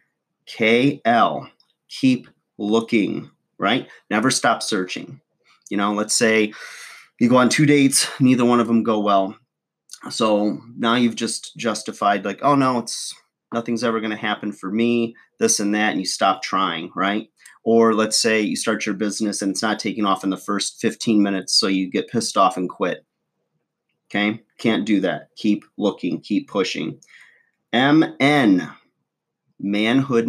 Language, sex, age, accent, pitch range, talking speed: English, male, 30-49, American, 100-120 Hz, 160 wpm